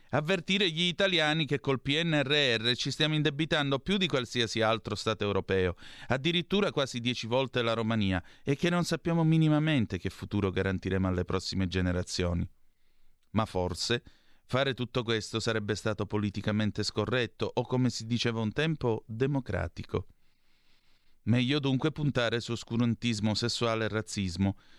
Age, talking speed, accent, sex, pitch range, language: 30-49, 135 wpm, native, male, 95-135 Hz, Italian